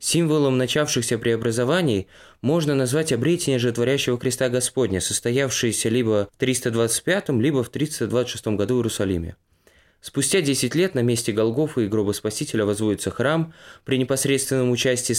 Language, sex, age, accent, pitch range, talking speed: Russian, male, 20-39, native, 110-135 Hz, 130 wpm